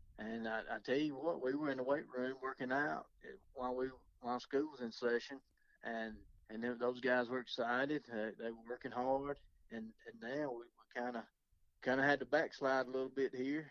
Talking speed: 210 wpm